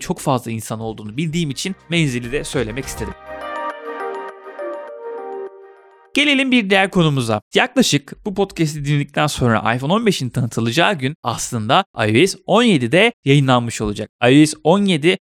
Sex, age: male, 30-49